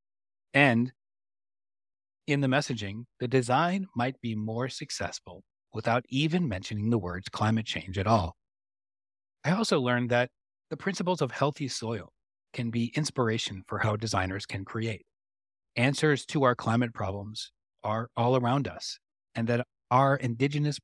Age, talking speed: 40-59, 140 wpm